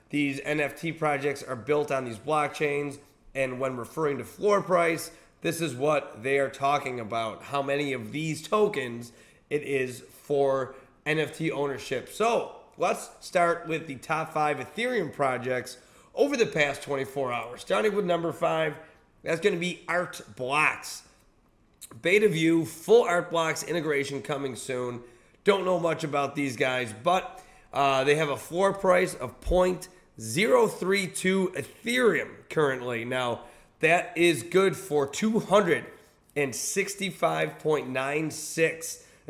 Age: 30-49